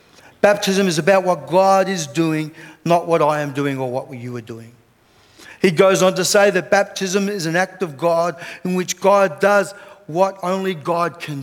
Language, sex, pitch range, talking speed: English, male, 155-195 Hz, 195 wpm